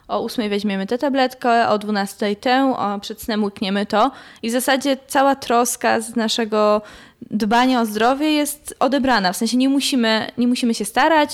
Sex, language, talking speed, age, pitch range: female, Polish, 170 wpm, 20-39, 200-245 Hz